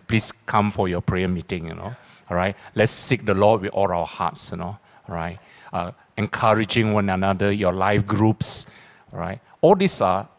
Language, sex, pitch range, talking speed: English, male, 95-125 Hz, 195 wpm